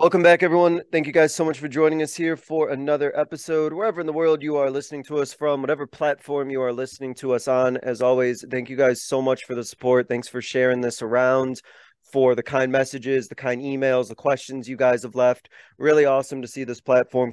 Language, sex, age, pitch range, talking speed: English, male, 30-49, 120-140 Hz, 230 wpm